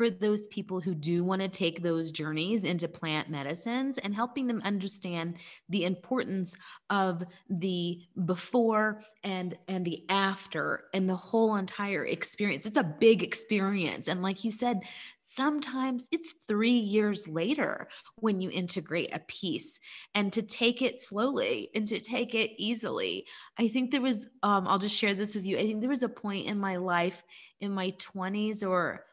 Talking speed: 170 wpm